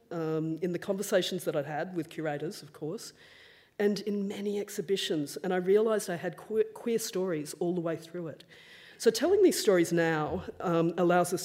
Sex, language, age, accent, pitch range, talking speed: female, English, 40-59, Australian, 155-185 Hz, 195 wpm